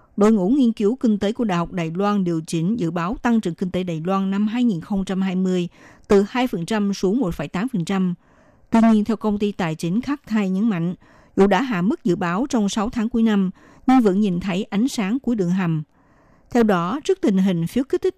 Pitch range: 175-225 Hz